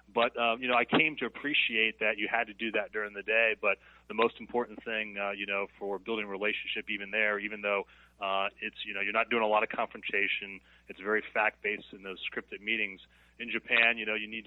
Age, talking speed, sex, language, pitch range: 30-49, 240 wpm, male, English, 100-110 Hz